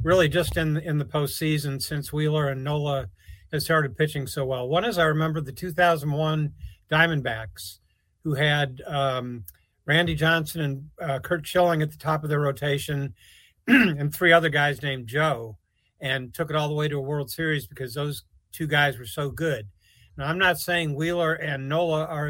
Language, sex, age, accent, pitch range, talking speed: English, male, 50-69, American, 135-160 Hz, 185 wpm